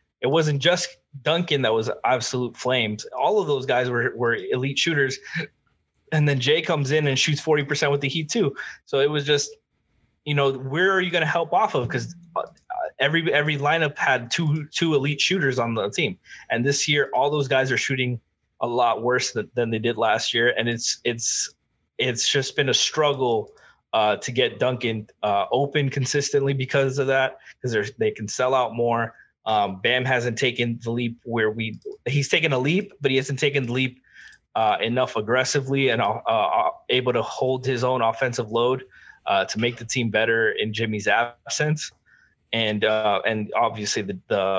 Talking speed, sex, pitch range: 190 wpm, male, 120-150 Hz